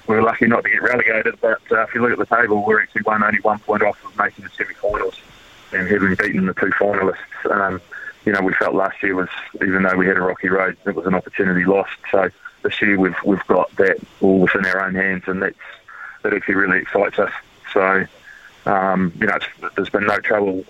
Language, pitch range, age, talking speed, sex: English, 95-105 Hz, 20-39, 230 wpm, male